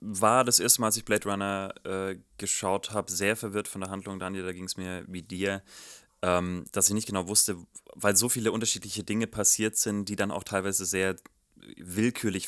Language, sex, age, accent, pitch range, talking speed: German, male, 30-49, German, 90-105 Hz, 200 wpm